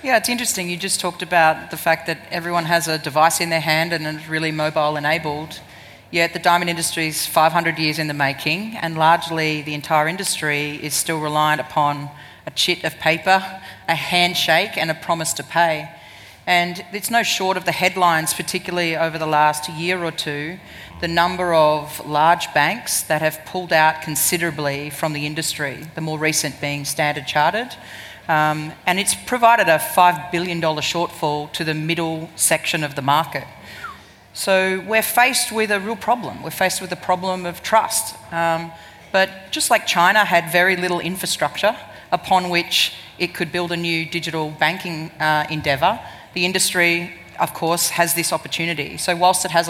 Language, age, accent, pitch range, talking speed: English, 30-49, Australian, 155-180 Hz, 175 wpm